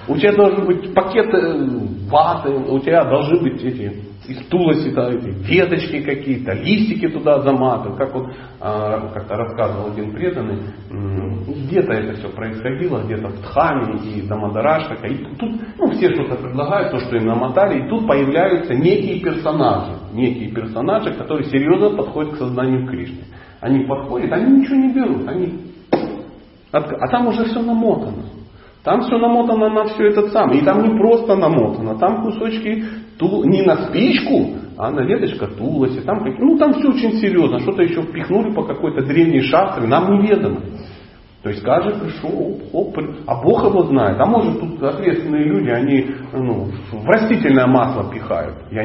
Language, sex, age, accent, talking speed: Russian, male, 40-59, native, 155 wpm